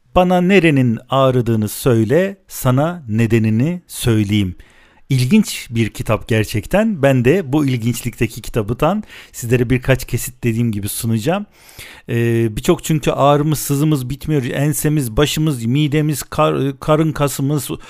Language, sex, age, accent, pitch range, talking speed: Turkish, male, 50-69, native, 120-160 Hz, 110 wpm